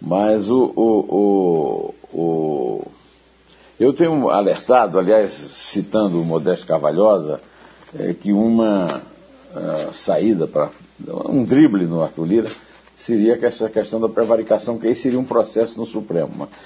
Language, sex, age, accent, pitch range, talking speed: Portuguese, male, 60-79, Brazilian, 95-115 Hz, 125 wpm